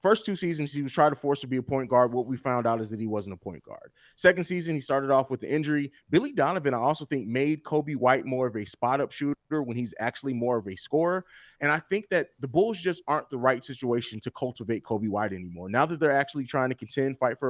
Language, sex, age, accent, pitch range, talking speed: English, male, 30-49, American, 125-160 Hz, 265 wpm